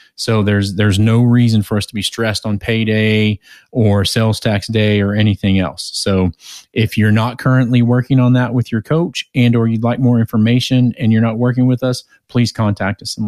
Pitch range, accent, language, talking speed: 110-125 Hz, American, English, 210 wpm